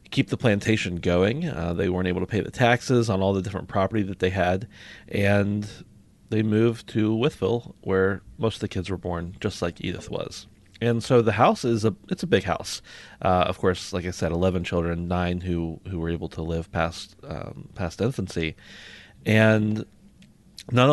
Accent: American